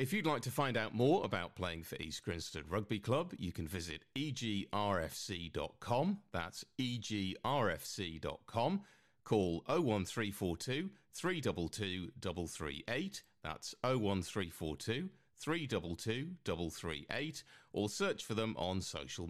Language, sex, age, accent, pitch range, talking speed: English, male, 40-59, British, 85-125 Hz, 105 wpm